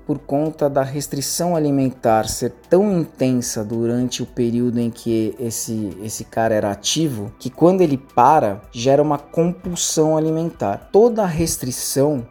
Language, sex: Portuguese, male